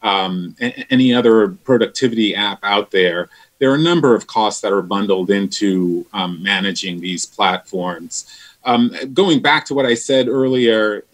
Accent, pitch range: American, 100-135 Hz